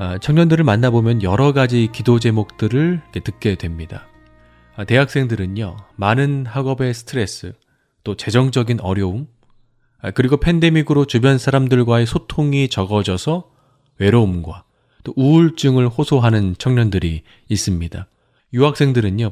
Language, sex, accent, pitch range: Korean, male, native, 100-135 Hz